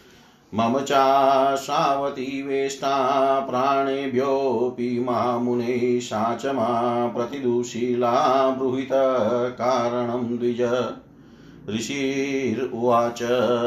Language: Hindi